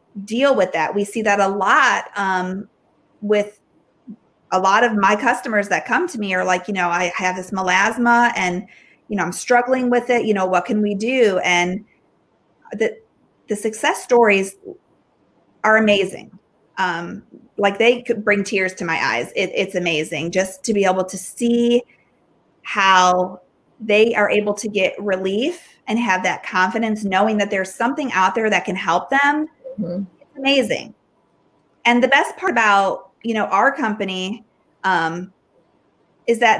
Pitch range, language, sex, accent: 190-240 Hz, English, female, American